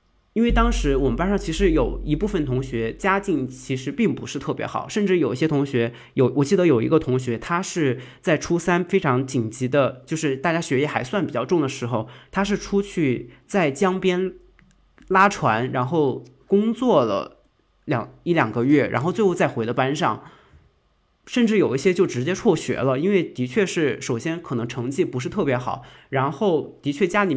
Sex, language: male, Chinese